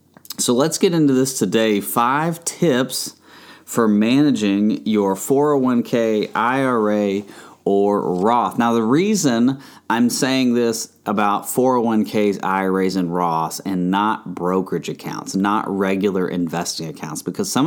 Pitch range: 90-120 Hz